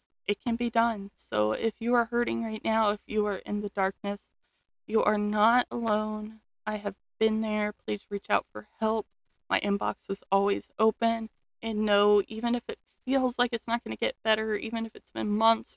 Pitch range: 200-230 Hz